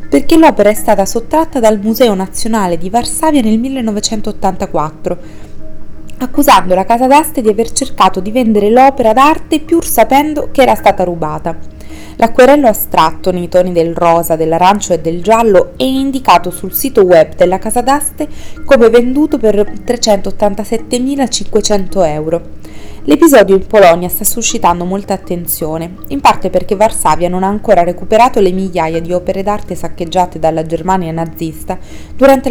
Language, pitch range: Italian, 175-235 Hz